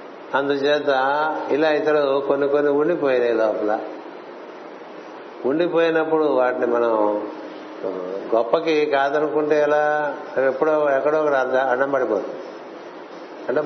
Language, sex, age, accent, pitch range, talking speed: Telugu, male, 60-79, native, 130-155 Hz, 85 wpm